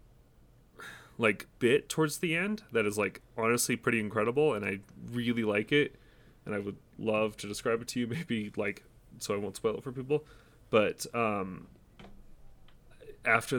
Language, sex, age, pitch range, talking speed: English, male, 20-39, 105-130 Hz, 165 wpm